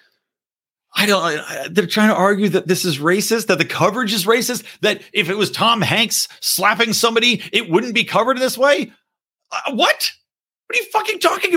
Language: English